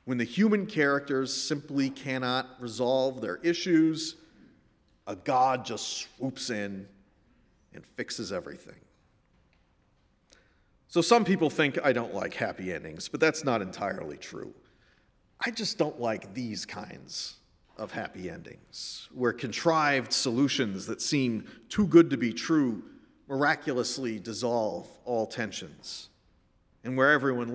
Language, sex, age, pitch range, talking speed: English, male, 40-59, 115-150 Hz, 125 wpm